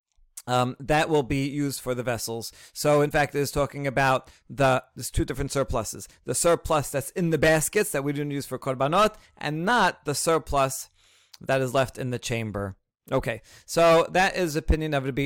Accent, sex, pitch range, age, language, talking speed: American, male, 130-160 Hz, 40-59, English, 195 wpm